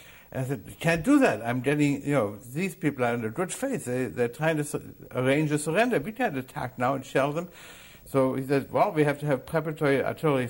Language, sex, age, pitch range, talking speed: English, male, 60-79, 110-150 Hz, 245 wpm